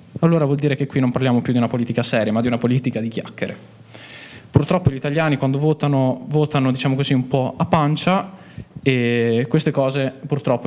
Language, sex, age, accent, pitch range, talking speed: Italian, male, 20-39, native, 120-145 Hz, 190 wpm